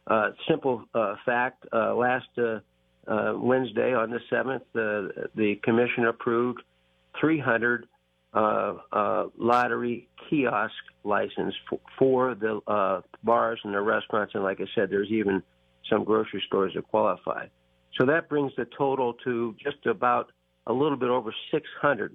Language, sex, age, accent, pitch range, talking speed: English, male, 50-69, American, 105-125 Hz, 145 wpm